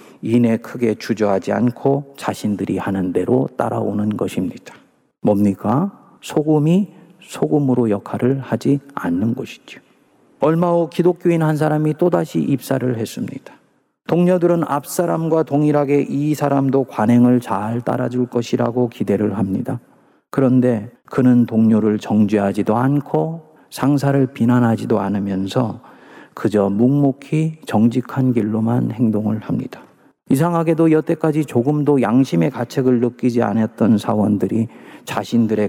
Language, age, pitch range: Korean, 40-59, 105-140 Hz